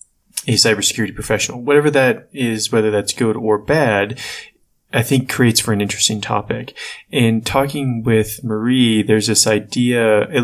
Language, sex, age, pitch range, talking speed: English, male, 20-39, 105-120 Hz, 150 wpm